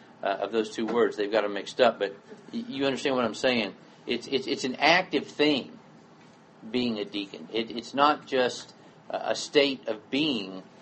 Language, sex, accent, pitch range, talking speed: English, male, American, 115-150 Hz, 185 wpm